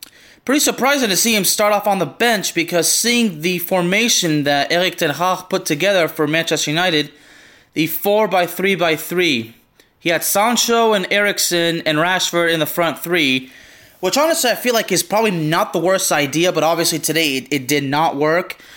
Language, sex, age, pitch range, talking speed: English, male, 20-39, 155-205 Hz, 190 wpm